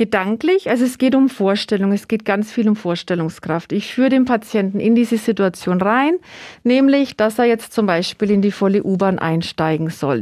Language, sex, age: German, female, 40-59